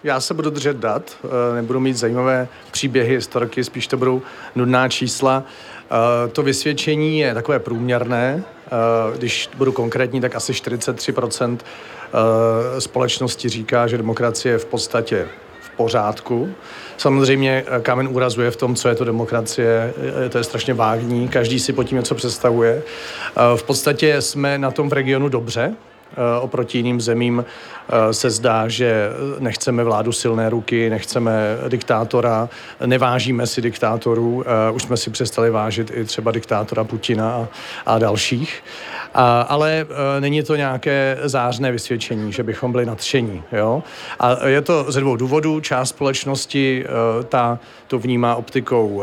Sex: male